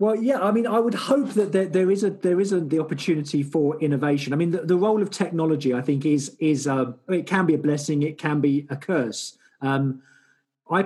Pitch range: 140-170 Hz